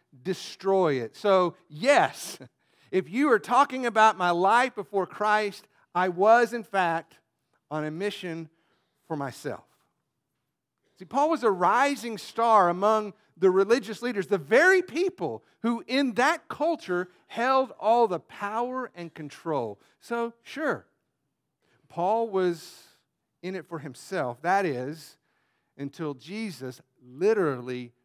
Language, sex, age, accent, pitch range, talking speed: English, male, 50-69, American, 160-210 Hz, 125 wpm